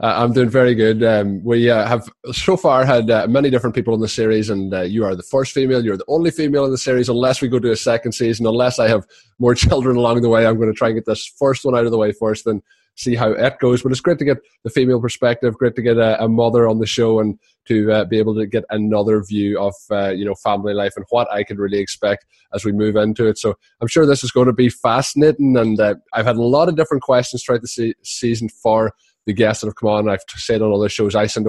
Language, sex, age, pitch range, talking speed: English, male, 20-39, 105-125 Hz, 275 wpm